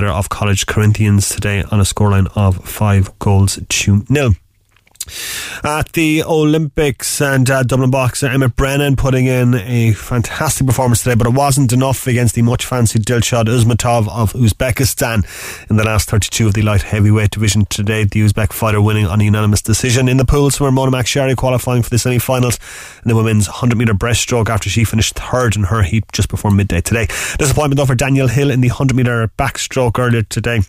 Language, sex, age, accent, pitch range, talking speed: English, male, 30-49, Irish, 105-125 Hz, 195 wpm